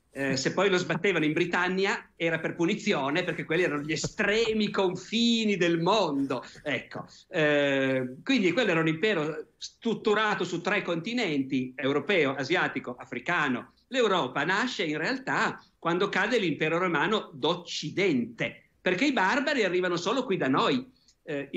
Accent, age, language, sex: native, 50-69, Italian, male